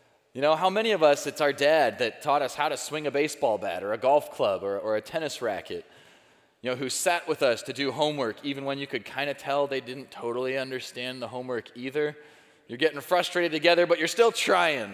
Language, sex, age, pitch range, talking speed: English, male, 30-49, 125-170 Hz, 235 wpm